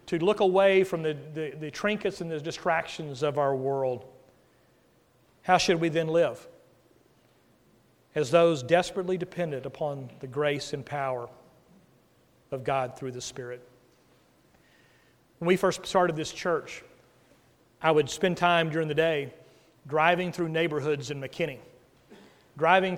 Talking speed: 135 wpm